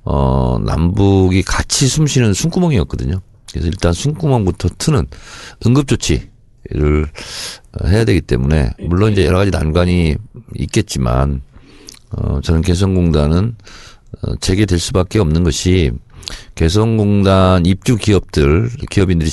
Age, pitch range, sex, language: 50-69, 80-110 Hz, male, Korean